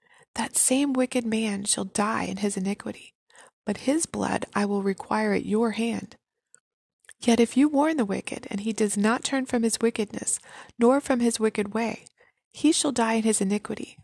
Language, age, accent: English, 20-39, American